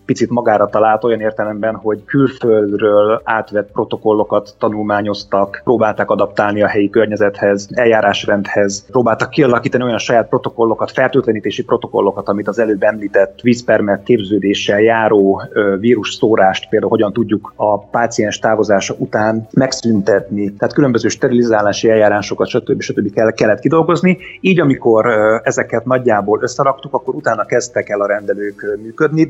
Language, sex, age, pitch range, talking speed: Hungarian, male, 30-49, 105-125 Hz, 120 wpm